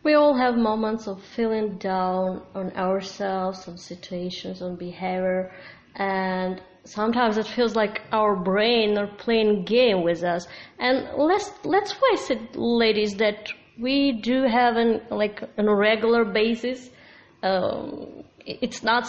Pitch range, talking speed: 190-235 Hz, 140 wpm